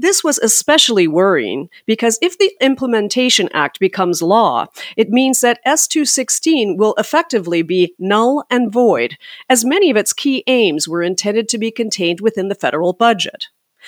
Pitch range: 190-265 Hz